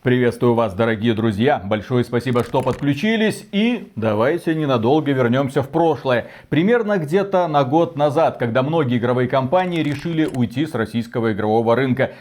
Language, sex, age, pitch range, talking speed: Russian, male, 30-49, 125-160 Hz, 145 wpm